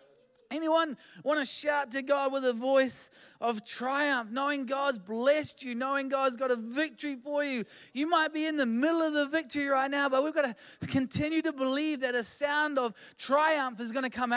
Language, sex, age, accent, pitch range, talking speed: English, male, 20-39, Australian, 175-275 Hz, 205 wpm